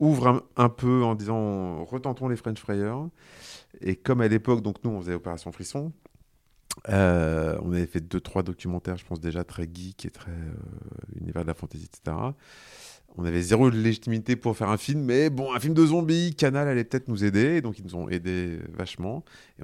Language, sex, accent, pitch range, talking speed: French, male, French, 90-115 Hz, 200 wpm